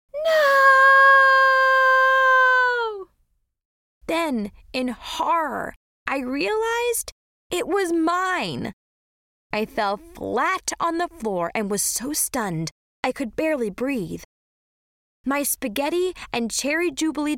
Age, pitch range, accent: 20-39, 230-320 Hz, American